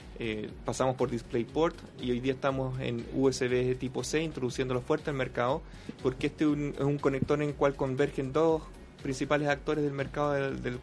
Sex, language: male, Spanish